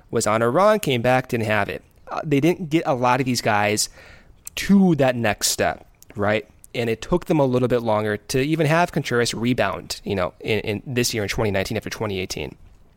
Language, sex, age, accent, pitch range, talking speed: English, male, 20-39, American, 110-150 Hz, 205 wpm